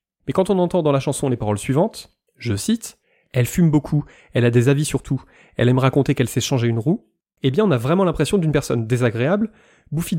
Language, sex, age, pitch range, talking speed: French, male, 20-39, 120-155 Hz, 240 wpm